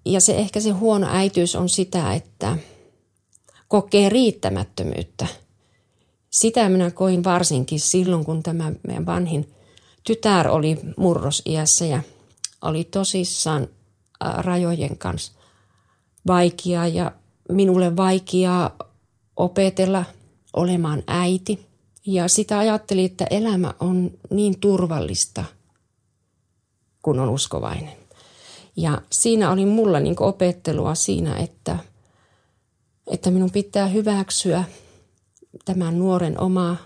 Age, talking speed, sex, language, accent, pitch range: 40-59, 100 wpm, female, Finnish, native, 140-190 Hz